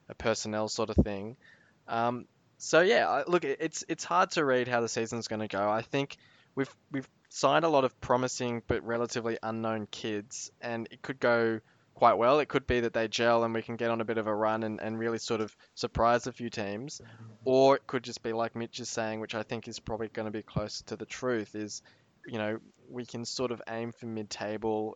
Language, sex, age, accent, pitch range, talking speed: English, male, 20-39, Australian, 110-125 Hz, 230 wpm